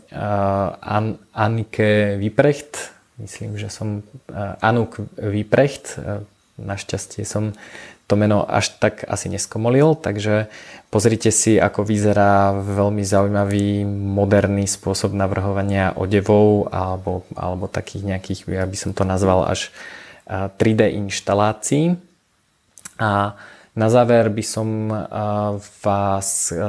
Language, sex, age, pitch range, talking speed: Slovak, male, 20-39, 100-105 Hz, 95 wpm